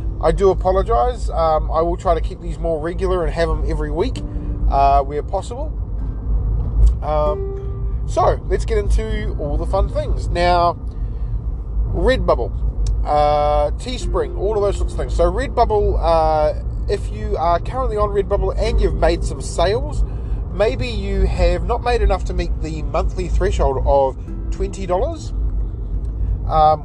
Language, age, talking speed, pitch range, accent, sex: English, 30-49, 150 wpm, 125-160 Hz, Australian, male